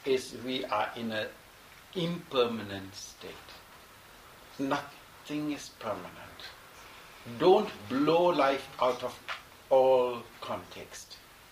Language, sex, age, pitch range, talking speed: English, male, 60-79, 120-160 Hz, 90 wpm